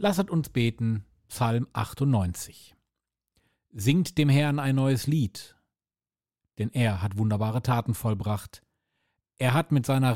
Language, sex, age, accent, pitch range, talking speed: German, male, 40-59, German, 105-130 Hz, 125 wpm